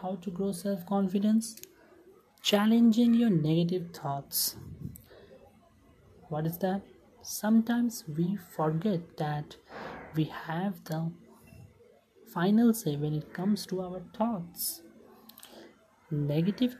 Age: 30-49